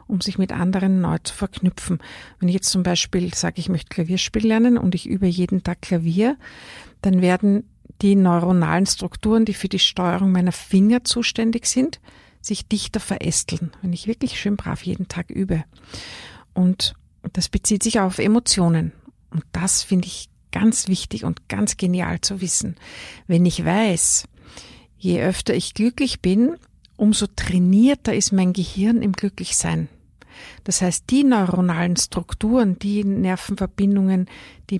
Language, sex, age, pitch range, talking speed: German, female, 50-69, 180-210 Hz, 150 wpm